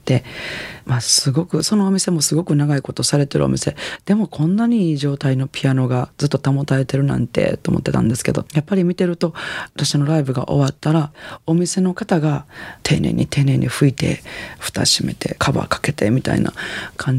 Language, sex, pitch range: Japanese, female, 130-165 Hz